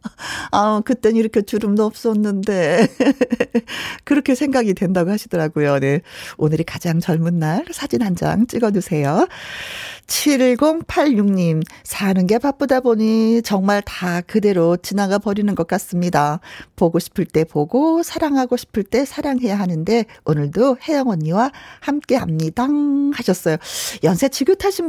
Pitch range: 165-250 Hz